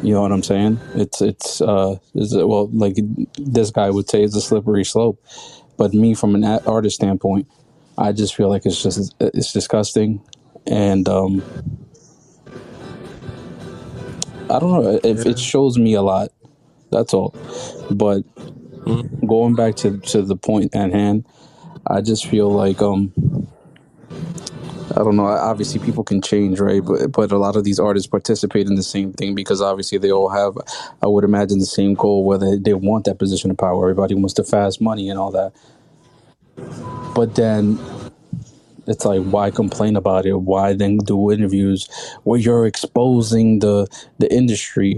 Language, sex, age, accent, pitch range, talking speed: English, male, 20-39, American, 100-115 Hz, 165 wpm